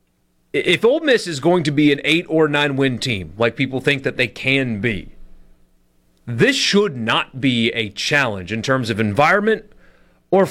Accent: American